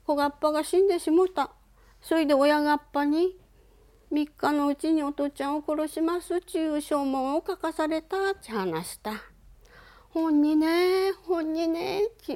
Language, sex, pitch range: Japanese, female, 260-345 Hz